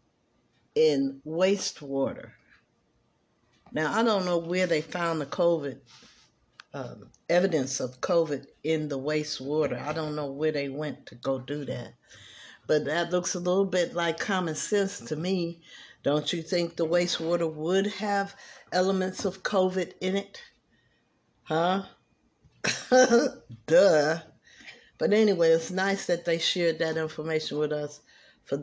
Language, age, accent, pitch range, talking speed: English, 60-79, American, 150-190 Hz, 135 wpm